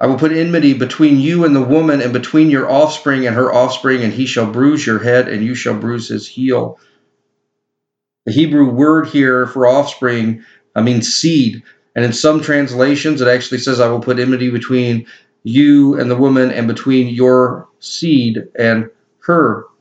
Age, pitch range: 40-59, 115-140 Hz